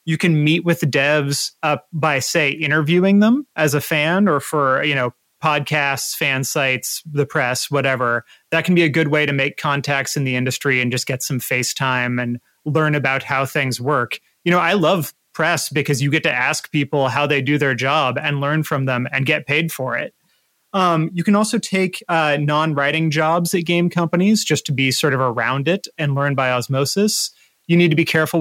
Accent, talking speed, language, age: American, 210 wpm, English, 30-49